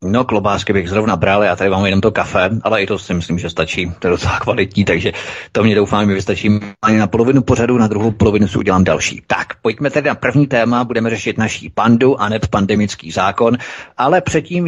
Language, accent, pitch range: Czech, native, 100-125 Hz